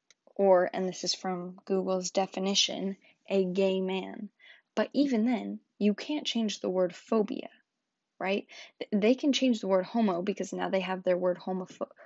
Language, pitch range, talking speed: English, 185-230 Hz, 165 wpm